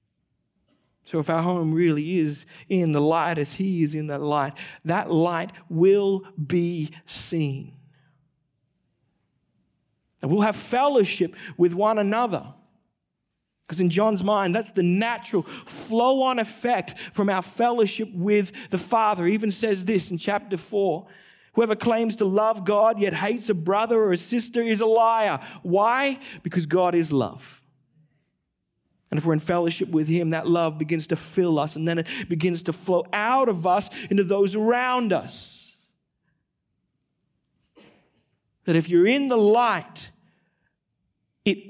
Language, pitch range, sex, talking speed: English, 160-210 Hz, male, 145 wpm